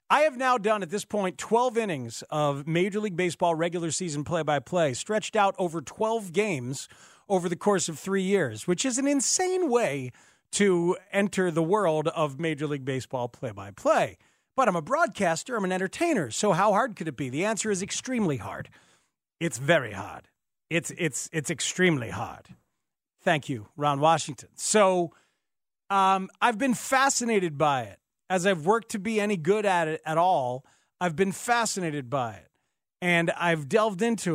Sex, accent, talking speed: male, American, 170 wpm